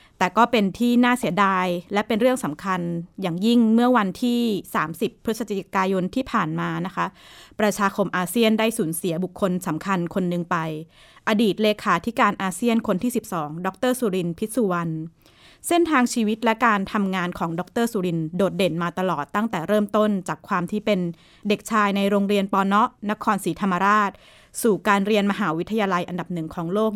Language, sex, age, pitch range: Thai, female, 20-39, 175-220 Hz